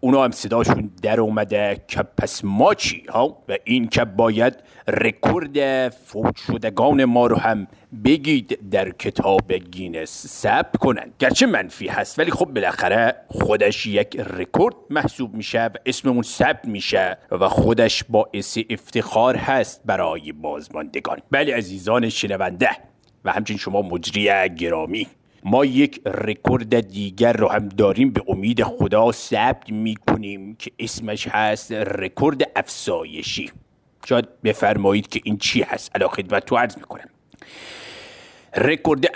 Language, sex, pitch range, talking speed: Persian, male, 105-125 Hz, 125 wpm